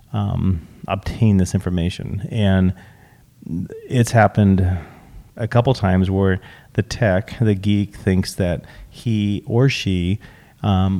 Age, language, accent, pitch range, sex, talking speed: 30-49, English, American, 95-115 Hz, male, 115 wpm